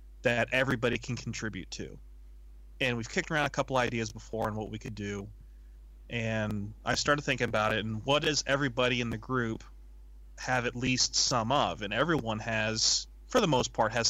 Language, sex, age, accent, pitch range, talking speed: English, male, 30-49, American, 95-125 Hz, 185 wpm